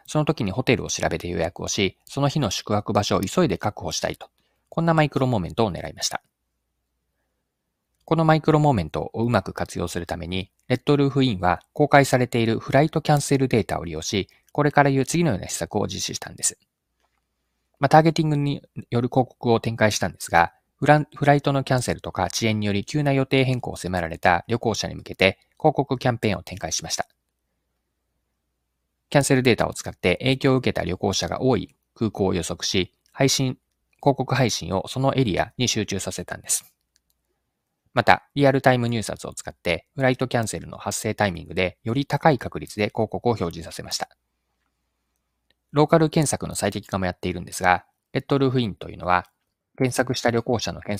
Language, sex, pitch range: Japanese, male, 90-135 Hz